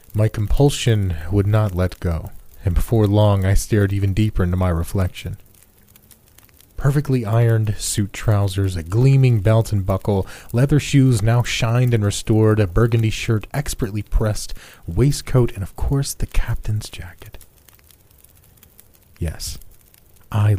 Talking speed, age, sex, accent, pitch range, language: 130 wpm, 40-59, male, American, 95-110 Hz, English